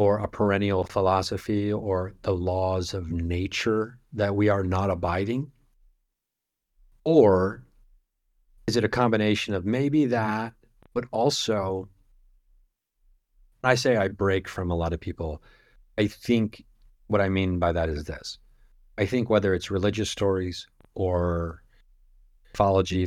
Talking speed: 130 wpm